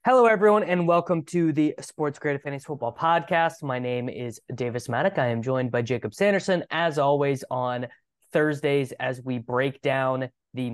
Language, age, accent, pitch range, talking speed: English, 20-39, American, 125-170 Hz, 175 wpm